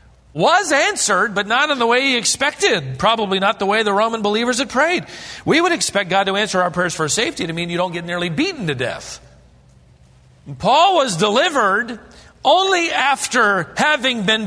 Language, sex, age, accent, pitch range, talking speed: English, male, 40-59, American, 115-175 Hz, 185 wpm